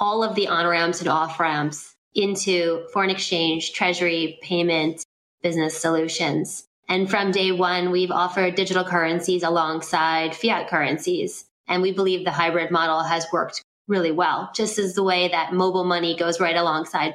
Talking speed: 155 wpm